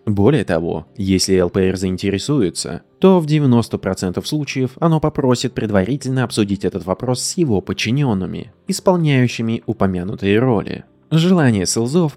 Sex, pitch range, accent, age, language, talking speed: male, 100-150 Hz, native, 20-39, Russian, 115 wpm